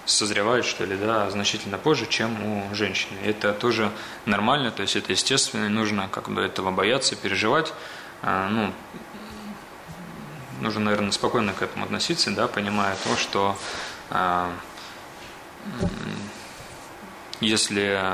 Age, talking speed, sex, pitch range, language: 20-39, 115 wpm, male, 95-115 Hz, Russian